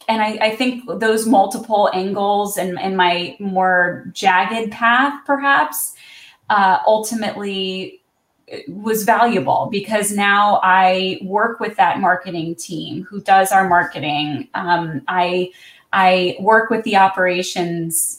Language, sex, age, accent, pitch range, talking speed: English, female, 20-39, American, 180-220 Hz, 120 wpm